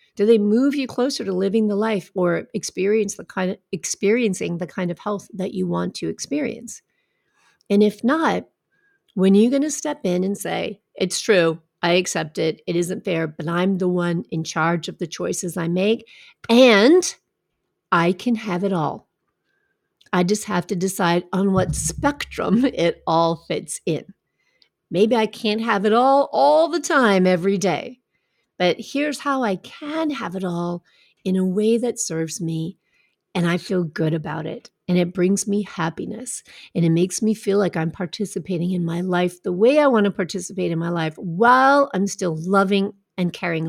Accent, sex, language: American, female, English